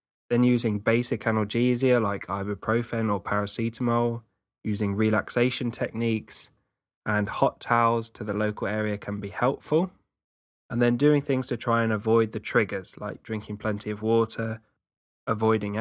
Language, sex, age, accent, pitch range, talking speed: English, male, 20-39, British, 105-130 Hz, 140 wpm